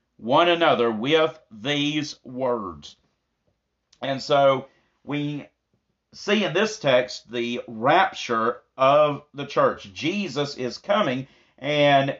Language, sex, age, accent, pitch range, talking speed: English, male, 40-59, American, 120-170 Hz, 105 wpm